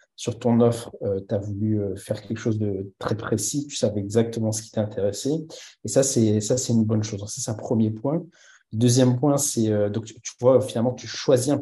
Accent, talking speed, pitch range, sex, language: French, 230 wpm, 105-125 Hz, male, French